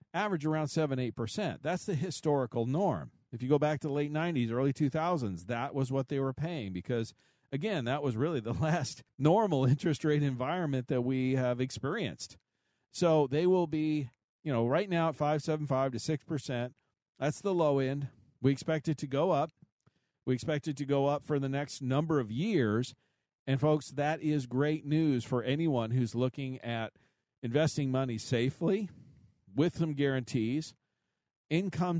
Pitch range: 125-155 Hz